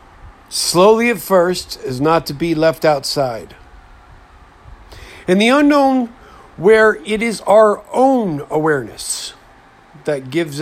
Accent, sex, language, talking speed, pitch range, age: American, male, English, 115 wpm, 150-185 Hz, 50-69